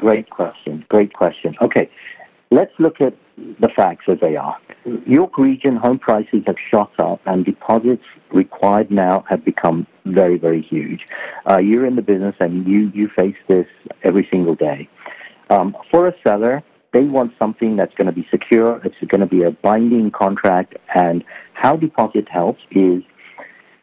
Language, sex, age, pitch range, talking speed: English, male, 60-79, 95-125 Hz, 165 wpm